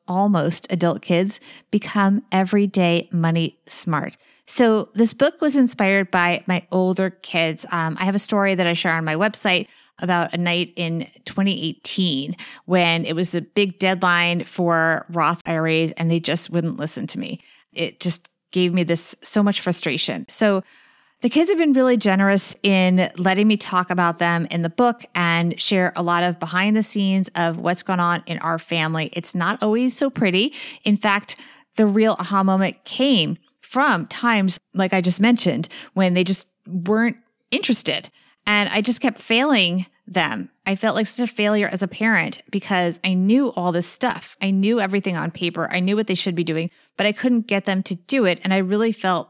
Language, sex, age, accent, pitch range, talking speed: English, female, 30-49, American, 175-220 Hz, 190 wpm